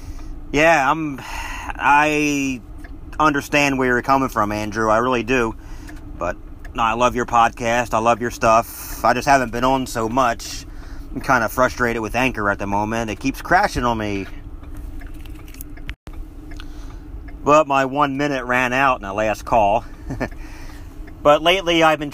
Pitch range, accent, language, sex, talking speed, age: 100-135 Hz, American, English, male, 155 wpm, 40-59